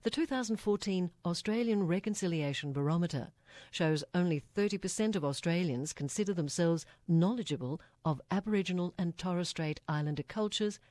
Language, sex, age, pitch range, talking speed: English, female, 50-69, 140-180 Hz, 110 wpm